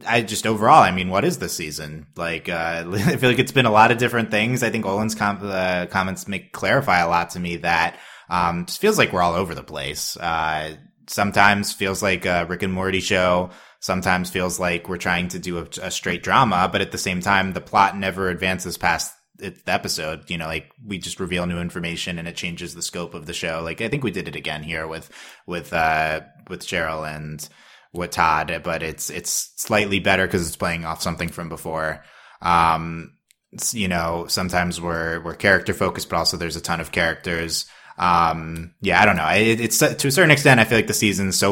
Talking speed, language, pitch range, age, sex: 225 wpm, English, 85-110 Hz, 20-39, male